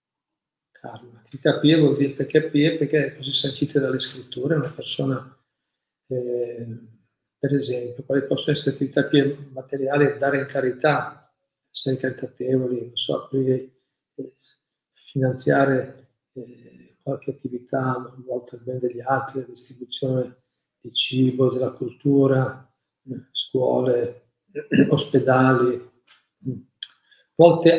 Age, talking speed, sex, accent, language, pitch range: 50-69, 100 wpm, male, native, Italian, 130-145 Hz